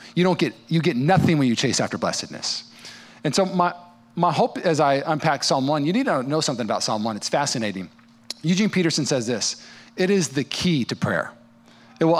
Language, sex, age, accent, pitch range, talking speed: English, male, 40-59, American, 125-175 Hz, 210 wpm